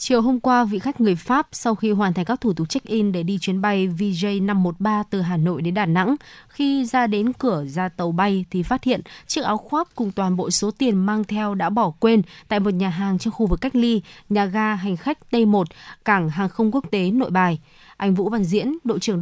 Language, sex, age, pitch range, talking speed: Vietnamese, female, 20-39, 185-230 Hz, 235 wpm